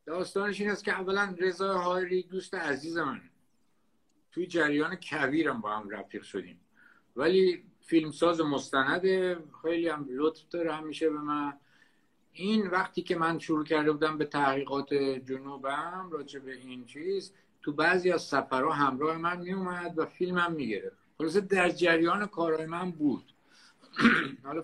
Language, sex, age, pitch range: Persian, male, 50-69, 130-180 Hz